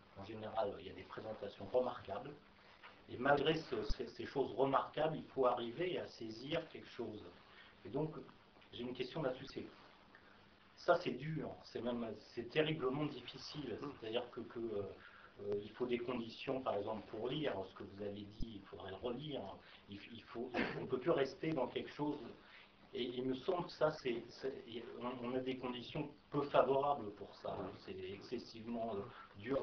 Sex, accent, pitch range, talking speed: male, French, 110-130 Hz, 180 wpm